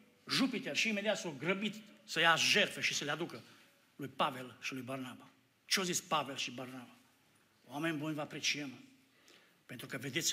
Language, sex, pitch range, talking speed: Romanian, male, 130-170 Hz, 180 wpm